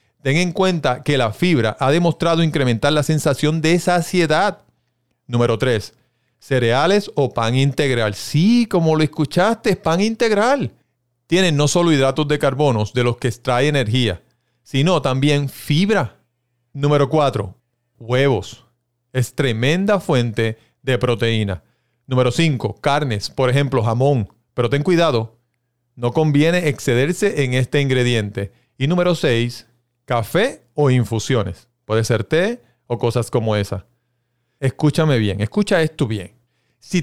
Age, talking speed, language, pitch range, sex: 40-59, 135 wpm, Spanish, 120-155 Hz, male